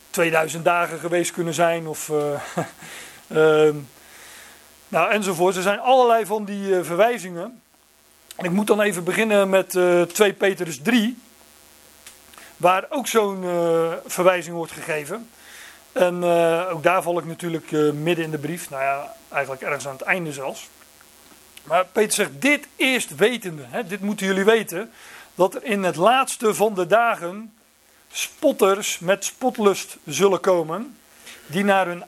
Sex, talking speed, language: male, 150 wpm, Dutch